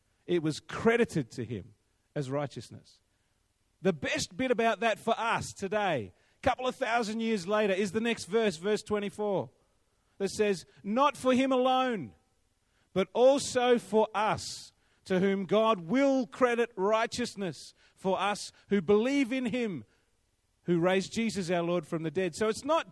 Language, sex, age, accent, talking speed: English, male, 40-59, Australian, 155 wpm